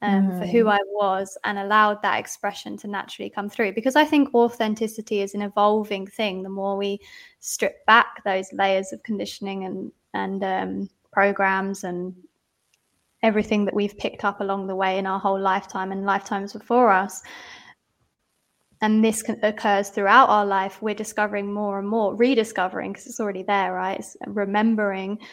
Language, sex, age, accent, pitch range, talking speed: English, female, 20-39, British, 195-230 Hz, 170 wpm